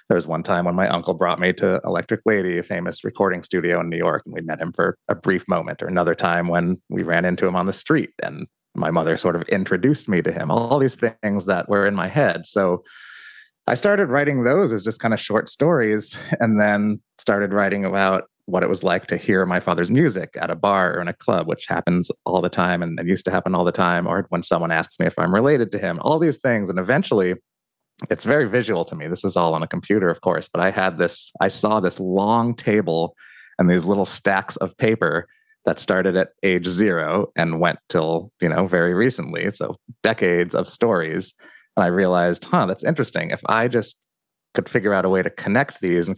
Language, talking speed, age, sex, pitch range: English, 230 wpm, 30-49, male, 90-105 Hz